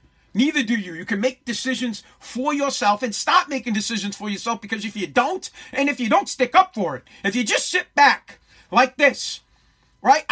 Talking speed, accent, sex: 205 wpm, American, male